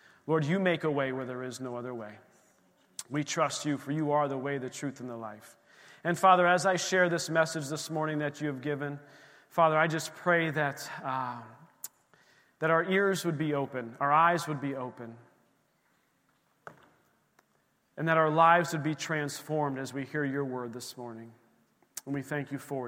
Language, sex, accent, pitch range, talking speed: English, male, American, 140-175 Hz, 190 wpm